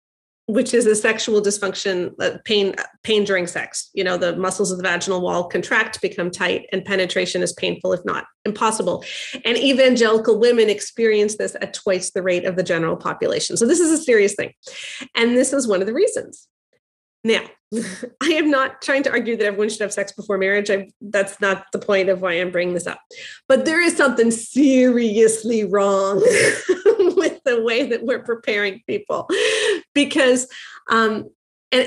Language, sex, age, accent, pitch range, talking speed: English, female, 30-49, American, 200-275 Hz, 175 wpm